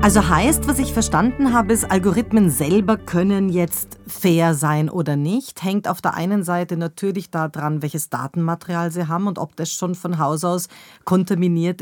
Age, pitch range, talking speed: 30-49, 165-200 Hz, 175 wpm